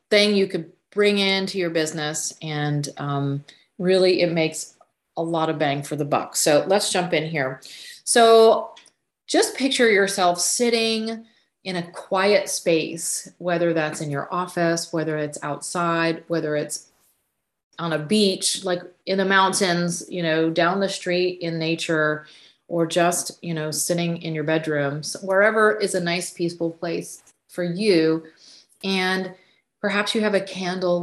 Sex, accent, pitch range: female, American, 160-195 Hz